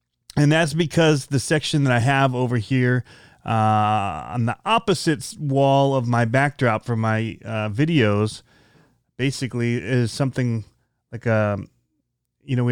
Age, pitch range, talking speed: 30-49, 115-140 Hz, 140 wpm